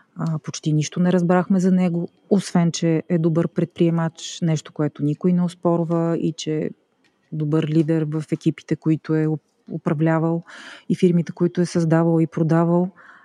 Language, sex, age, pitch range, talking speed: Bulgarian, female, 30-49, 155-185 Hz, 150 wpm